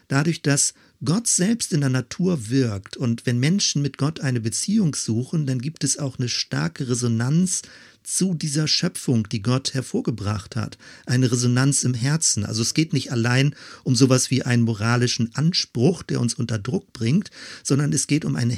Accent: German